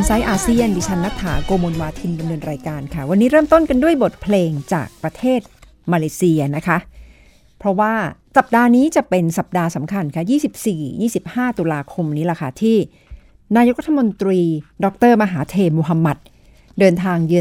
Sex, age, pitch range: female, 60-79, 165-220 Hz